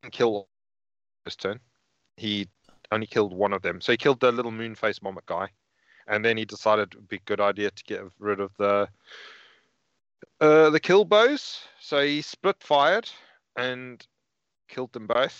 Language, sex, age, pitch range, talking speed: English, male, 30-49, 100-120 Hz, 175 wpm